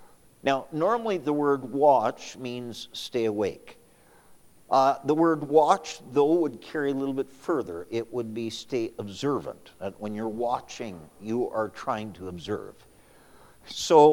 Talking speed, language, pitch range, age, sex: 140 wpm, English, 115-145 Hz, 50-69, male